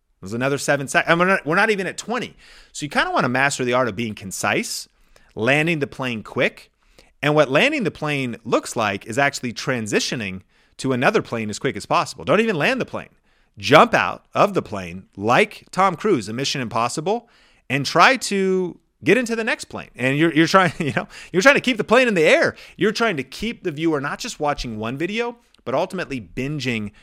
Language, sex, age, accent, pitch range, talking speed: English, male, 30-49, American, 110-165 Hz, 220 wpm